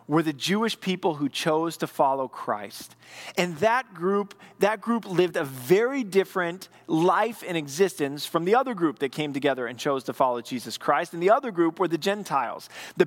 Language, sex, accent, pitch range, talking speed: English, male, American, 140-185 Hz, 195 wpm